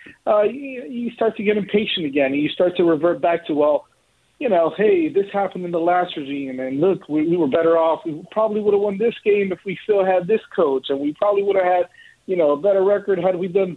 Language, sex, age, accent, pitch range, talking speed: English, male, 40-59, American, 145-195 Hz, 250 wpm